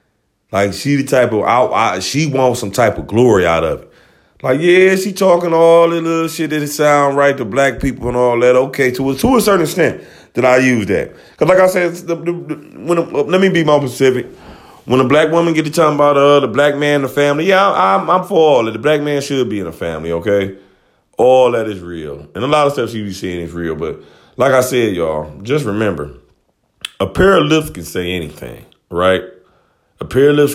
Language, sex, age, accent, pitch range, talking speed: English, male, 30-49, American, 95-145 Hz, 235 wpm